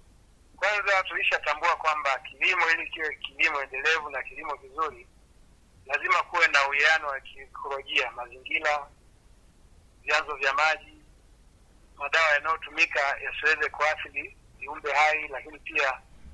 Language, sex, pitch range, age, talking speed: Swahili, male, 135-170 Hz, 60-79, 105 wpm